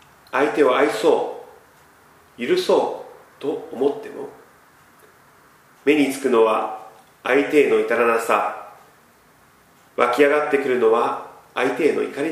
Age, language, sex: 40-59, Japanese, male